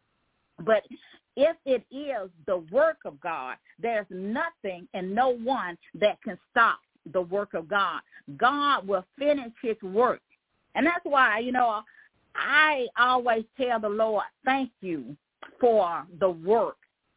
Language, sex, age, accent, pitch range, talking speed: English, female, 40-59, American, 185-245 Hz, 140 wpm